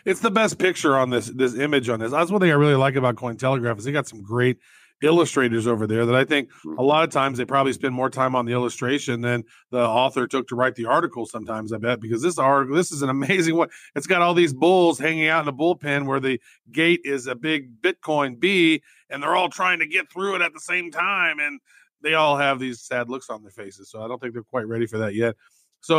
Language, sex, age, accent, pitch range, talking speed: English, male, 40-59, American, 120-150 Hz, 255 wpm